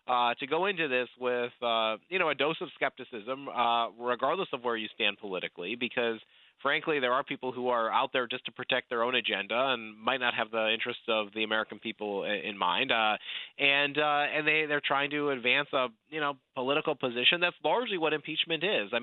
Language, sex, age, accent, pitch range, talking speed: English, male, 30-49, American, 120-145 Hz, 210 wpm